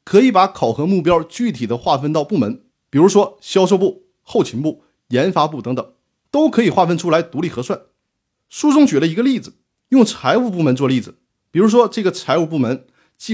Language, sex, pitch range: Chinese, male, 140-210 Hz